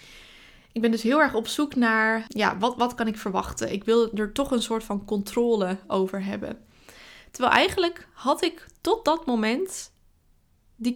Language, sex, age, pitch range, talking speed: Dutch, female, 20-39, 205-250 Hz, 175 wpm